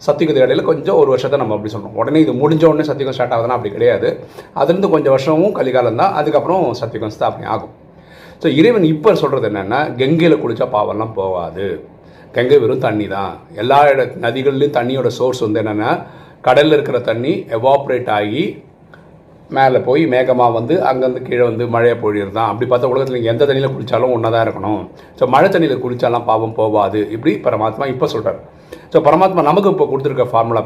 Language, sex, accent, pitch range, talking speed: Tamil, male, native, 115-155 Hz, 160 wpm